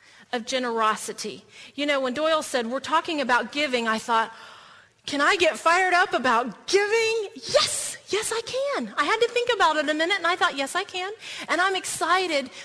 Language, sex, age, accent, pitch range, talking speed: English, female, 40-59, American, 235-320 Hz, 195 wpm